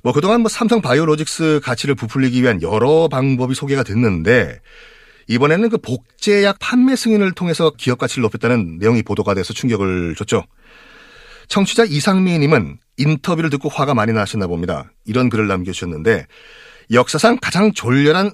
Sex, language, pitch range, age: male, Korean, 115-160 Hz, 40-59